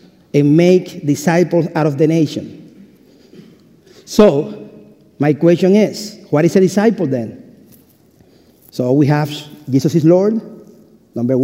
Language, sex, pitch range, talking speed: English, male, 155-200 Hz, 120 wpm